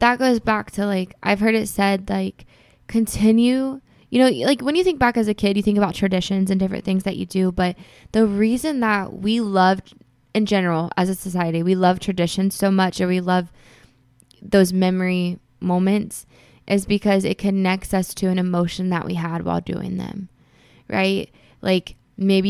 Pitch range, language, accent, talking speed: 165-195 Hz, English, American, 185 wpm